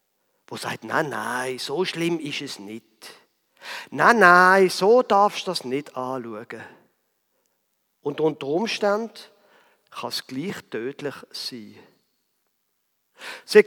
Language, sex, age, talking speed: German, male, 50-69, 115 wpm